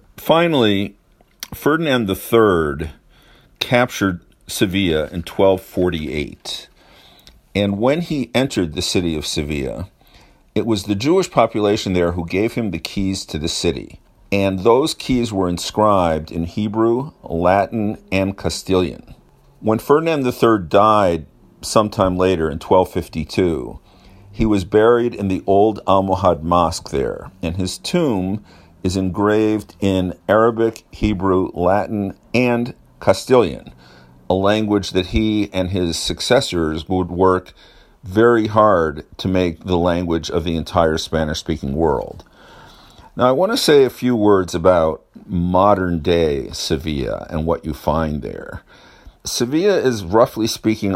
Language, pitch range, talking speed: English, 85-110 Hz, 125 wpm